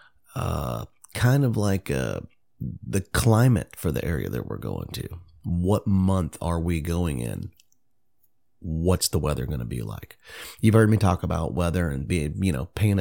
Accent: American